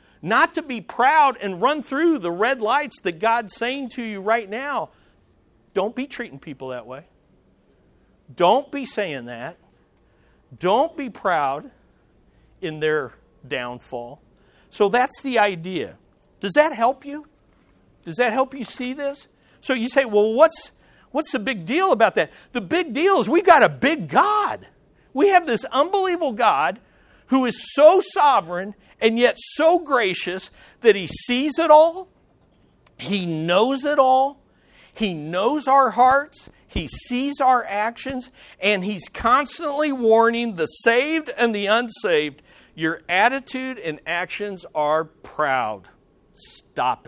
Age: 50-69